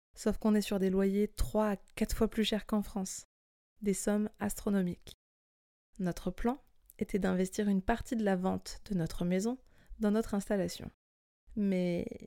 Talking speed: 160 wpm